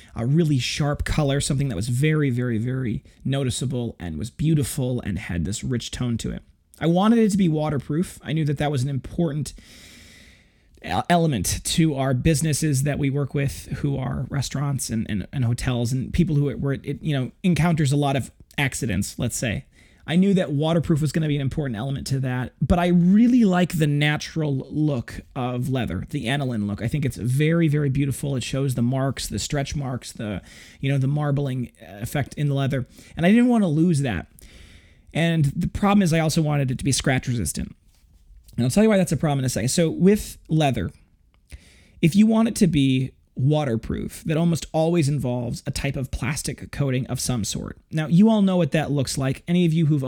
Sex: male